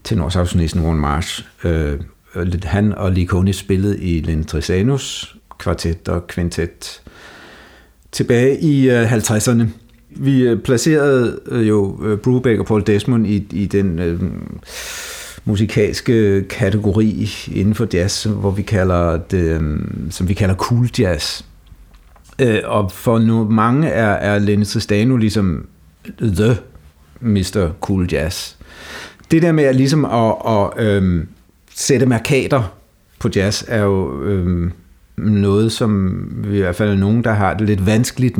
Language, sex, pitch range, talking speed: Danish, male, 85-110 Hz, 140 wpm